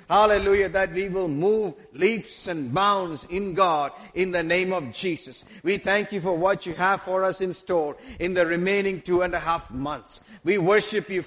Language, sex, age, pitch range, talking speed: English, male, 50-69, 175-210 Hz, 195 wpm